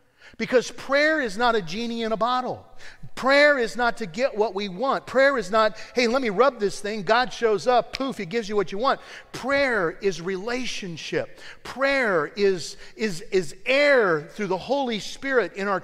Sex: male